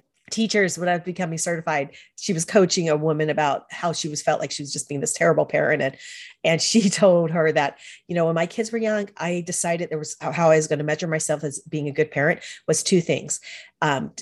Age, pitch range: 40-59, 155-200 Hz